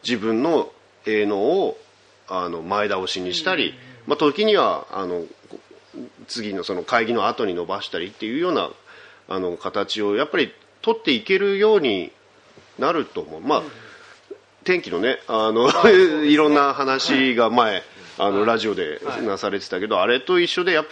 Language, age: Japanese, 40-59